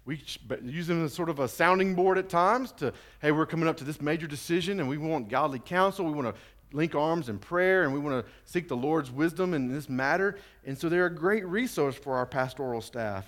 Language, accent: English, American